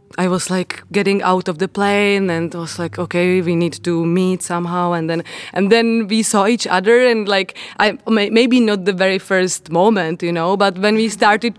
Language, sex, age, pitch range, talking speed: Czech, female, 20-39, 180-210 Hz, 205 wpm